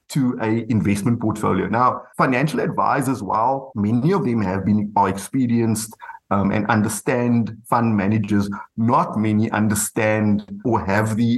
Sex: male